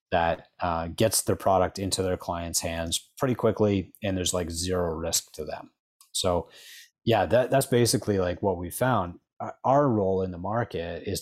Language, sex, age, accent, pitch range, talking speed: English, male, 30-49, American, 90-110 Hz, 170 wpm